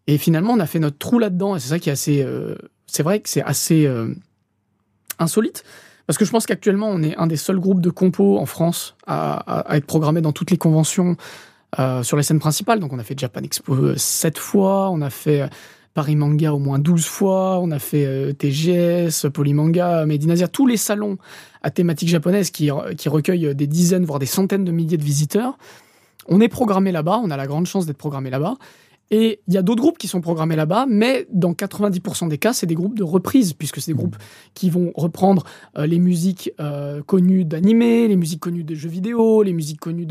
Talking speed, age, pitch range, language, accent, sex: 215 wpm, 20-39, 155-200 Hz, French, French, male